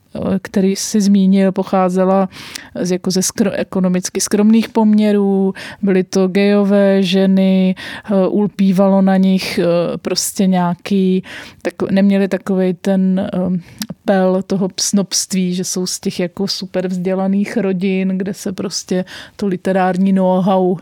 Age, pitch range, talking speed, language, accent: 30-49, 185-200 Hz, 125 wpm, Czech, native